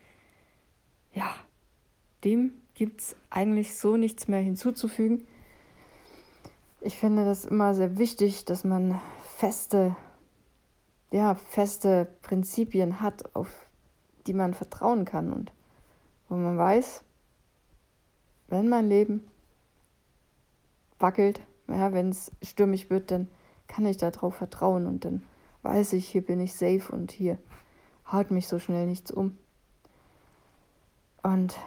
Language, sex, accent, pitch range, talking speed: German, female, German, 185-210 Hz, 115 wpm